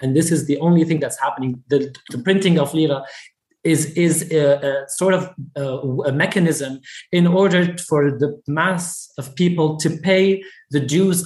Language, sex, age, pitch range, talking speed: English, male, 20-39, 140-180 Hz, 175 wpm